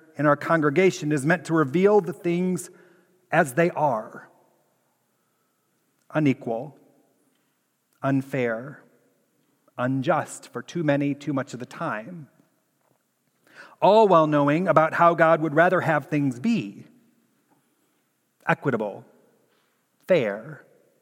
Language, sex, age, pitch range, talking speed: English, male, 40-59, 140-180 Hz, 105 wpm